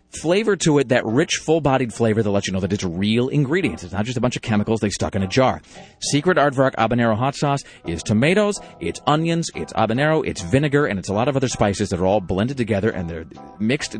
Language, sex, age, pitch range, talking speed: English, male, 30-49, 105-145 Hz, 235 wpm